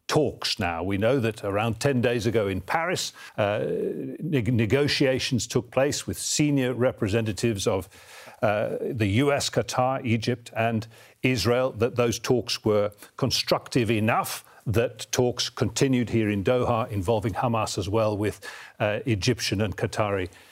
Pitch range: 105-130 Hz